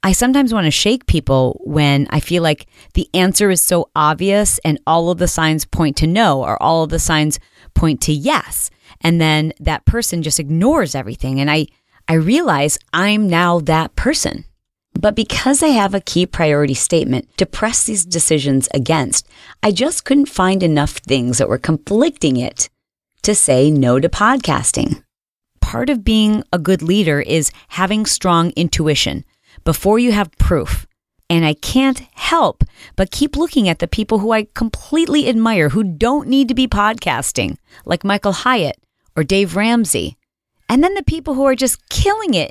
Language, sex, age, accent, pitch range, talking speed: English, female, 40-59, American, 160-245 Hz, 175 wpm